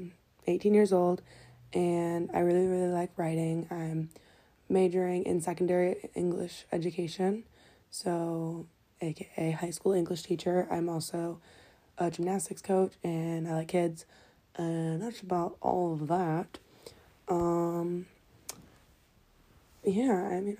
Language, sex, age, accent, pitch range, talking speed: English, female, 20-39, American, 165-185 Hz, 115 wpm